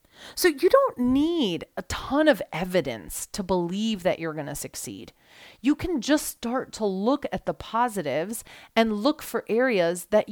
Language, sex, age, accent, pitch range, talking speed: English, female, 30-49, American, 180-250 Hz, 170 wpm